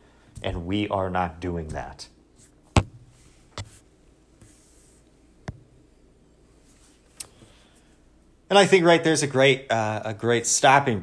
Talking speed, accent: 90 wpm, American